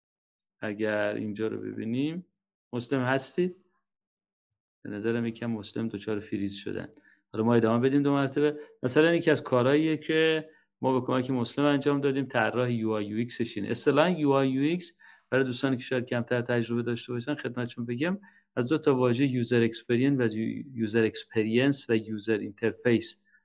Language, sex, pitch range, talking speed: Persian, male, 110-135 Hz, 160 wpm